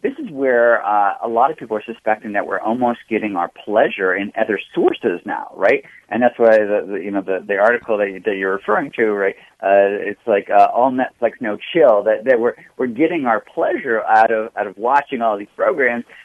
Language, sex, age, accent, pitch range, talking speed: English, male, 40-59, American, 105-165 Hz, 225 wpm